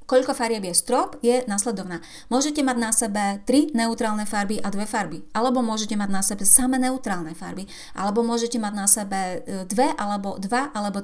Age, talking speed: 30-49, 180 wpm